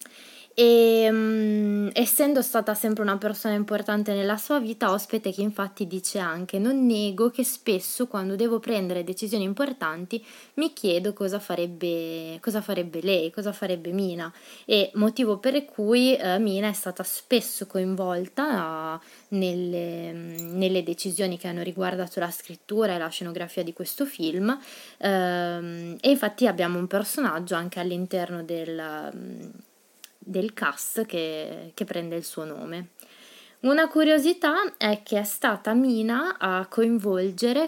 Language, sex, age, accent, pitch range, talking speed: Italian, female, 20-39, native, 180-225 Hz, 140 wpm